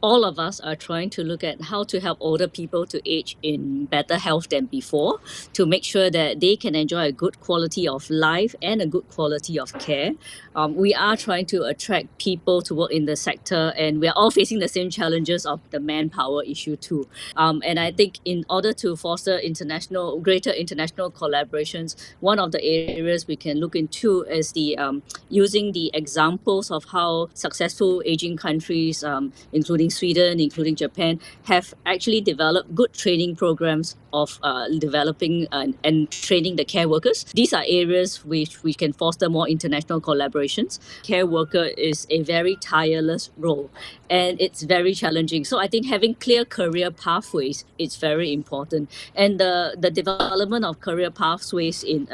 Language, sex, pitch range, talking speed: English, female, 155-185 Hz, 175 wpm